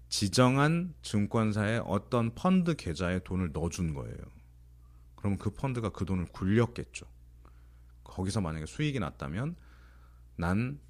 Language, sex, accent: Korean, male, native